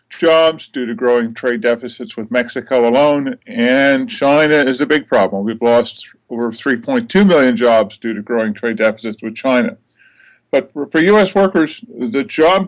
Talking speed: 160 wpm